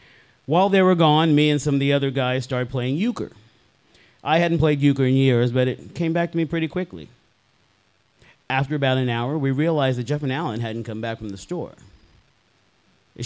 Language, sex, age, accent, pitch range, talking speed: English, male, 40-59, American, 120-150 Hz, 205 wpm